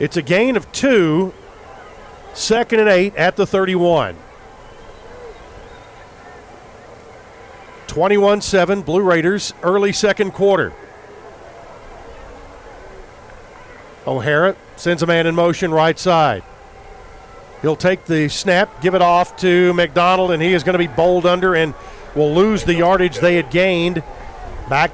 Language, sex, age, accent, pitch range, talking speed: English, male, 50-69, American, 160-190 Hz, 125 wpm